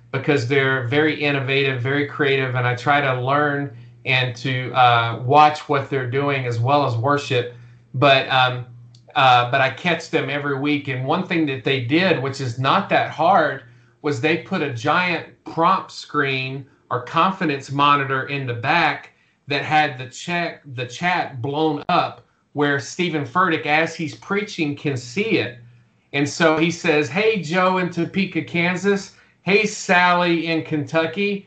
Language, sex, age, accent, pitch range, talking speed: English, male, 40-59, American, 135-170 Hz, 160 wpm